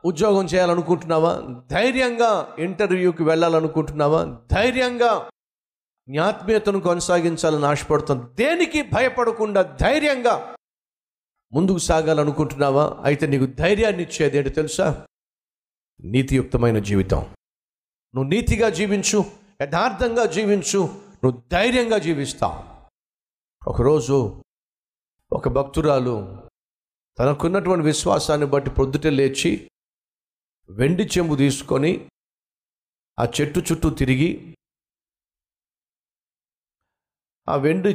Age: 50-69